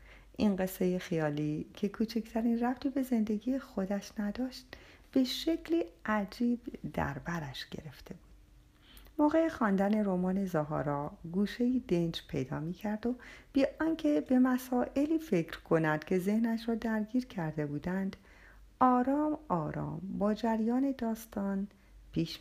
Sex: female